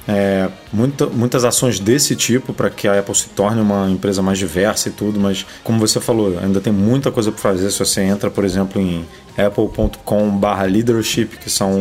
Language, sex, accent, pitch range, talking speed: Portuguese, male, Brazilian, 105-125 Hz, 185 wpm